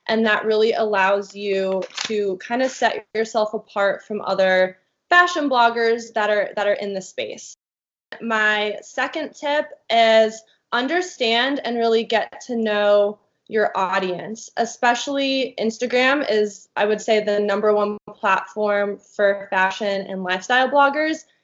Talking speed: 135 wpm